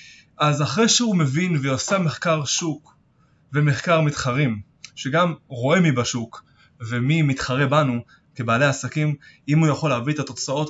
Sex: male